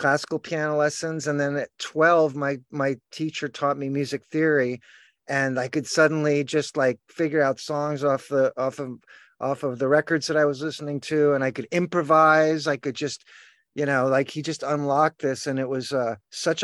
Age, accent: 50-69, American